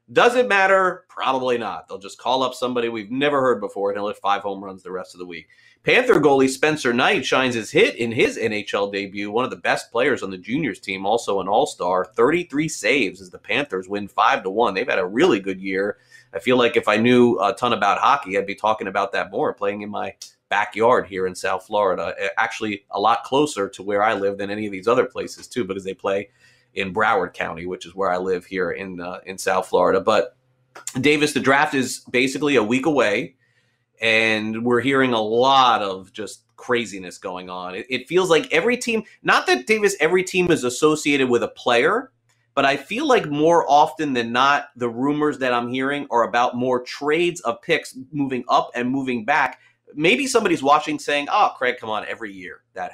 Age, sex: 30-49, male